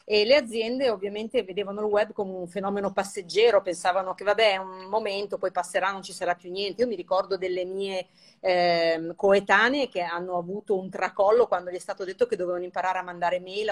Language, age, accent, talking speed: Italian, 40-59, native, 205 wpm